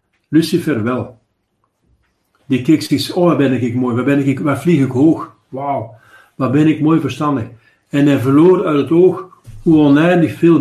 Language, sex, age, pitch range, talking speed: Dutch, male, 50-69, 110-155 Hz, 175 wpm